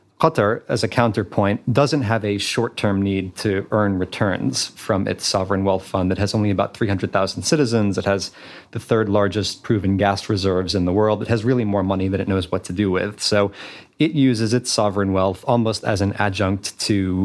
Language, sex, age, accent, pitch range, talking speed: English, male, 30-49, American, 100-115 Hz, 200 wpm